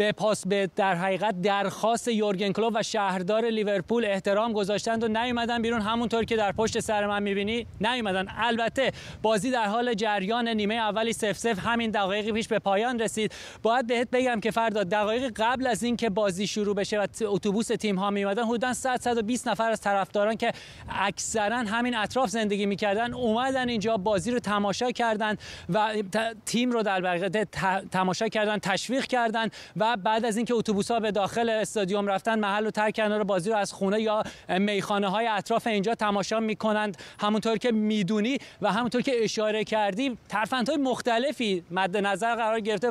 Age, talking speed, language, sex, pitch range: 30-49, 170 wpm, Persian, male, 200-230 Hz